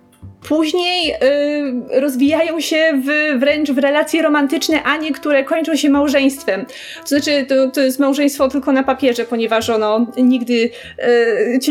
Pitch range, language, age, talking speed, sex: 255-290 Hz, Polish, 30-49, 150 wpm, female